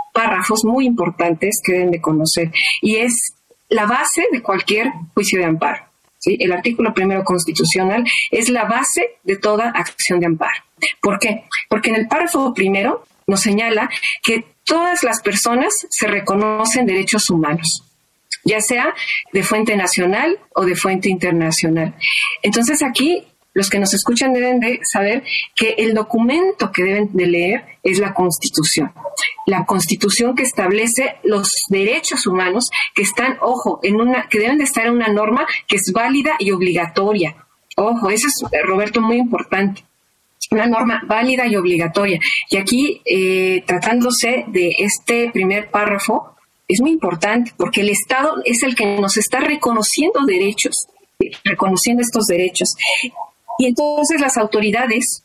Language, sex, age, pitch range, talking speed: Spanish, female, 40-59, 190-245 Hz, 150 wpm